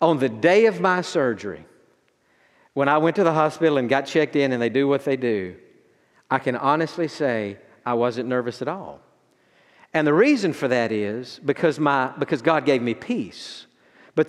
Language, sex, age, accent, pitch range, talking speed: English, male, 50-69, American, 150-230 Hz, 190 wpm